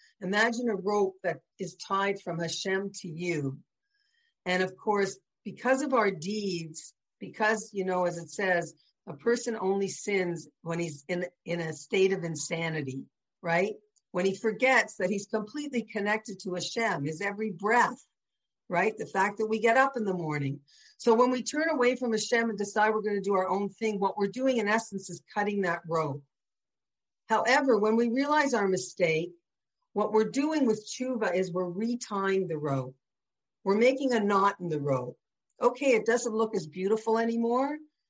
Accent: American